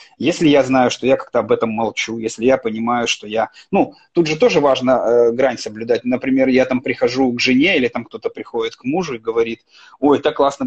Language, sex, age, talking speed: Russian, male, 30-49, 220 wpm